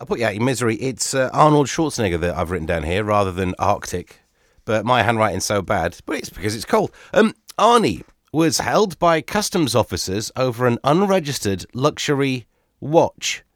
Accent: British